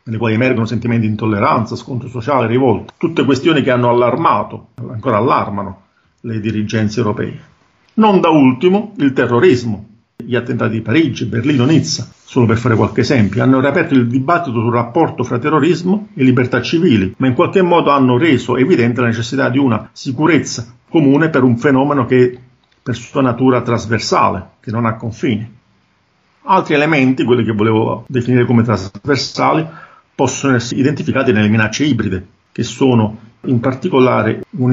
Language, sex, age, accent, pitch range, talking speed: Italian, male, 50-69, native, 115-135 Hz, 155 wpm